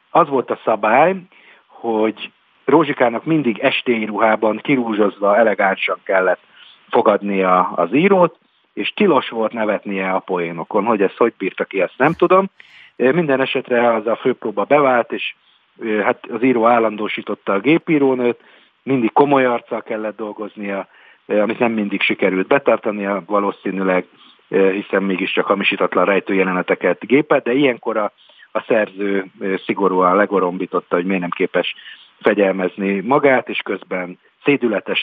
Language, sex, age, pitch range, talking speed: Hungarian, male, 50-69, 100-130 Hz, 125 wpm